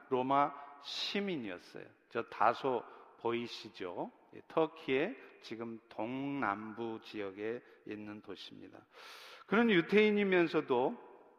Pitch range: 135-185 Hz